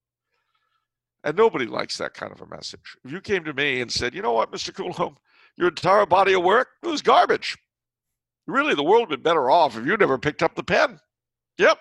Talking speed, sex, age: 215 wpm, male, 60-79